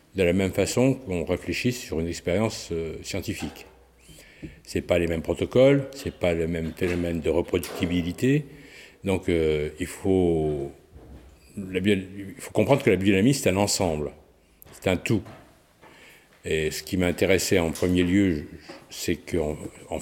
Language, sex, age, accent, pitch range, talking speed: French, male, 60-79, French, 85-110 Hz, 160 wpm